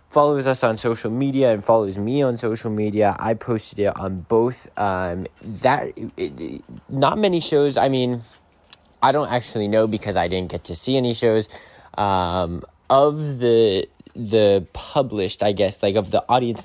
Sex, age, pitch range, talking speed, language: male, 20-39, 95-115 Hz, 175 wpm, English